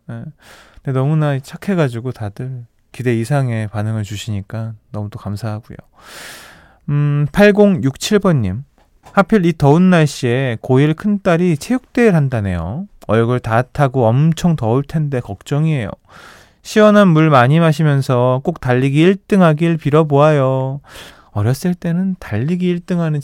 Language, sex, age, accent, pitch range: Korean, male, 20-39, native, 120-170 Hz